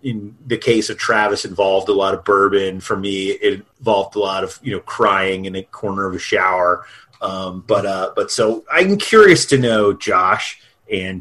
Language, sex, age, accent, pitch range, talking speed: English, male, 30-49, American, 100-125 Hz, 200 wpm